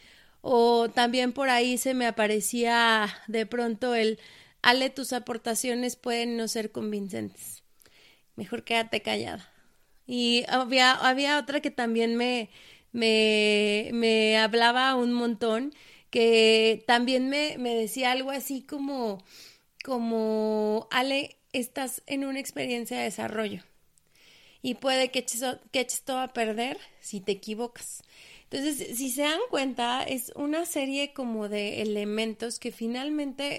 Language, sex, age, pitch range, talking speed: Spanish, female, 30-49, 220-255 Hz, 125 wpm